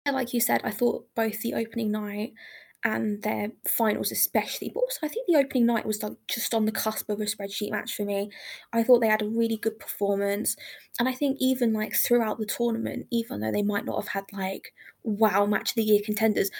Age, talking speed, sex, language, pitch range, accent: 20-39, 225 wpm, female, English, 215-240 Hz, British